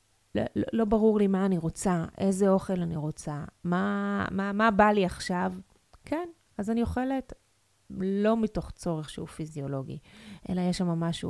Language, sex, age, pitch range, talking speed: Hebrew, female, 30-49, 155-195 Hz, 160 wpm